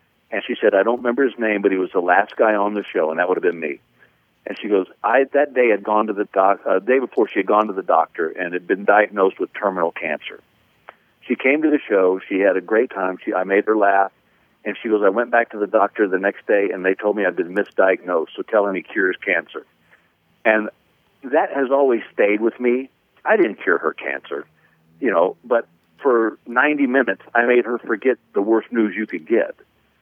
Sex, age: male, 50-69